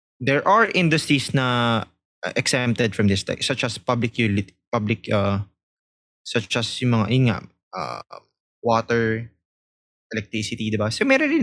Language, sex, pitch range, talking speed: English, male, 105-135 Hz, 135 wpm